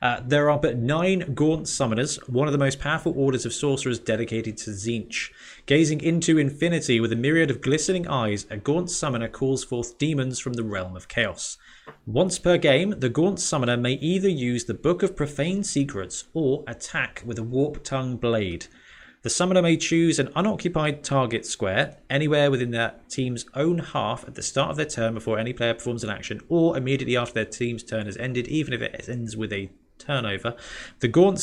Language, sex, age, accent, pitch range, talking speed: English, male, 30-49, British, 115-150 Hz, 195 wpm